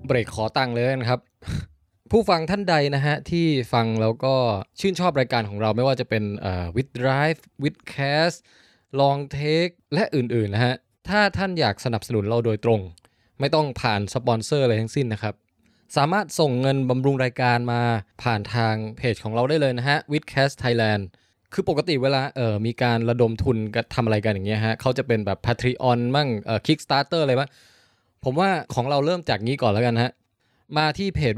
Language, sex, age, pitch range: Thai, male, 20-39, 110-140 Hz